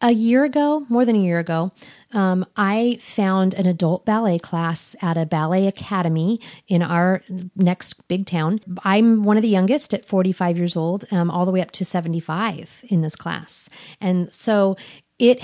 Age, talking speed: 40-59, 180 wpm